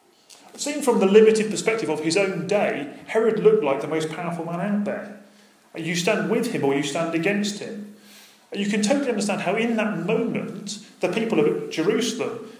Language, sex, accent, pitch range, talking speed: English, male, British, 150-215 Hz, 185 wpm